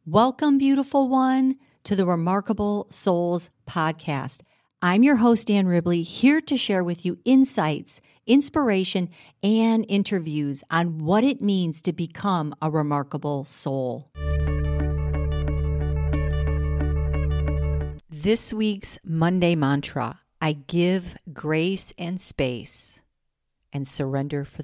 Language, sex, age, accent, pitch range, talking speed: English, female, 50-69, American, 140-190 Hz, 105 wpm